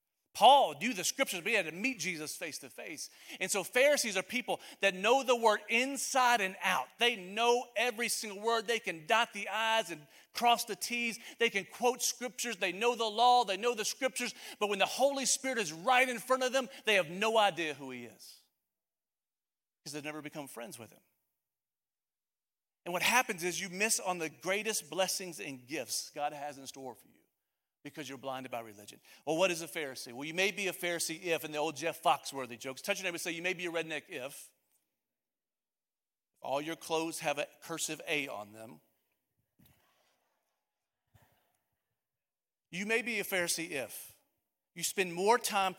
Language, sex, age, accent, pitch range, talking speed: English, male, 40-59, American, 155-230 Hz, 195 wpm